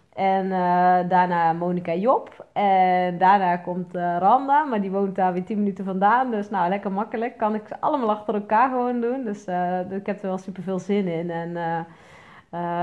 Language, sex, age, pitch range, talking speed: Dutch, female, 20-39, 180-220 Hz, 195 wpm